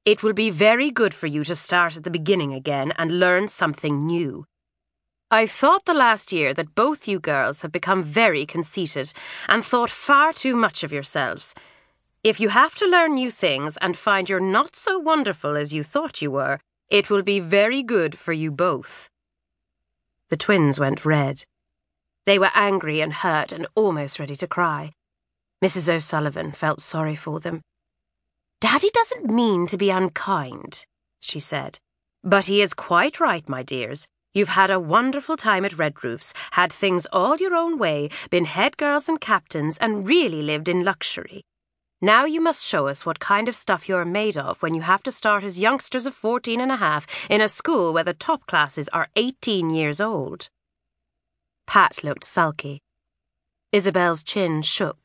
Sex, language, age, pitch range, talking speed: female, English, 30-49, 150-215 Hz, 180 wpm